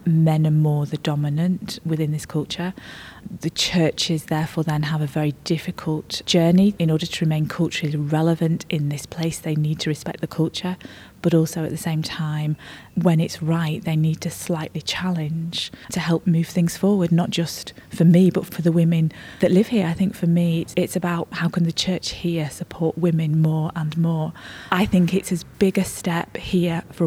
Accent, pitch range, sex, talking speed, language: British, 155-180 Hz, female, 195 wpm, English